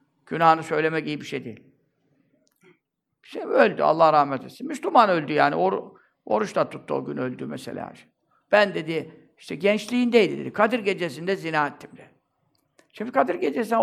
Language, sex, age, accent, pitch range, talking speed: Turkish, male, 60-79, native, 160-230 Hz, 150 wpm